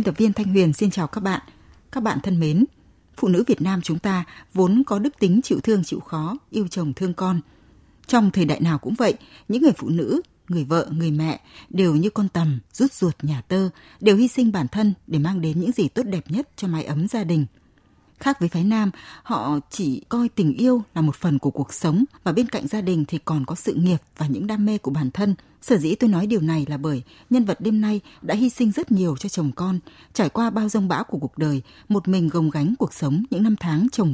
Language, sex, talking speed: Vietnamese, female, 245 wpm